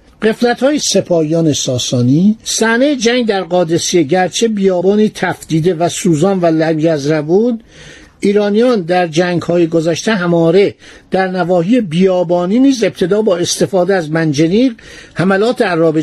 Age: 50-69